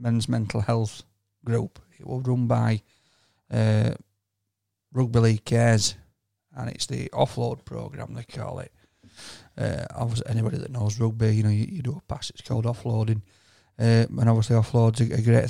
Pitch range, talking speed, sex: 110-130 Hz, 165 wpm, male